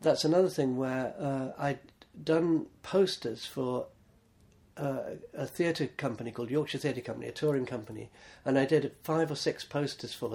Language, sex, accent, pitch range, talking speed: English, male, British, 115-150 Hz, 160 wpm